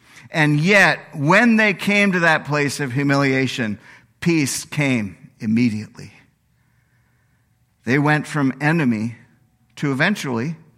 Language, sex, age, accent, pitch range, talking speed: English, male, 50-69, American, 130-185 Hz, 105 wpm